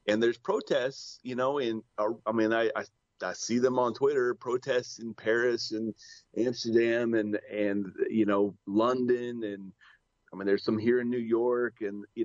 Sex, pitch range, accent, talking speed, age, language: male, 100-130 Hz, American, 180 wpm, 30-49, English